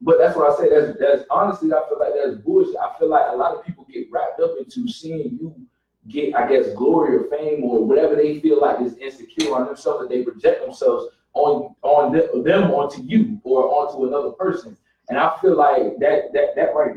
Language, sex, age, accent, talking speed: English, male, 20-39, American, 225 wpm